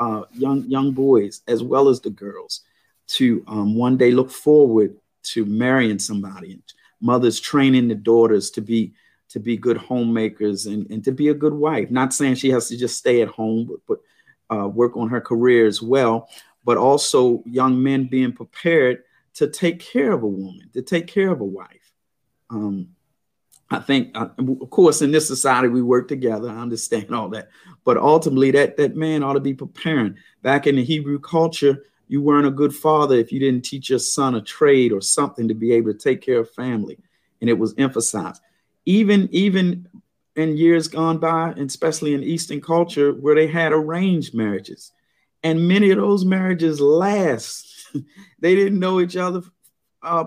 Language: English